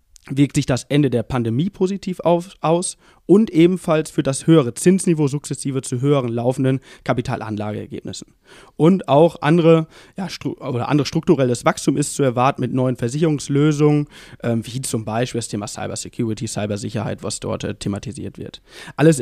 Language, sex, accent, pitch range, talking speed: German, male, German, 125-165 Hz, 145 wpm